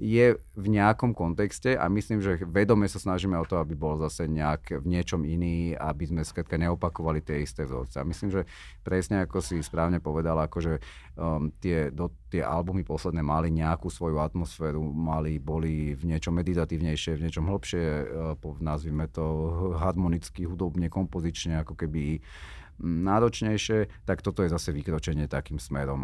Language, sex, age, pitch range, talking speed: Slovak, male, 30-49, 80-100 Hz, 160 wpm